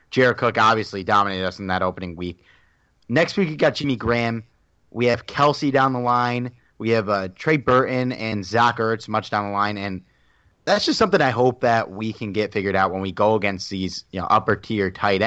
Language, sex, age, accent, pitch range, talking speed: English, male, 30-49, American, 100-120 Hz, 220 wpm